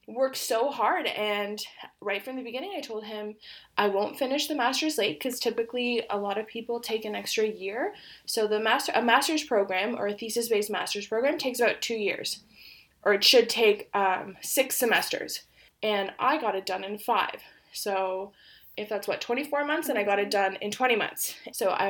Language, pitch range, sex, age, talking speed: English, 200-245 Hz, female, 20-39, 200 wpm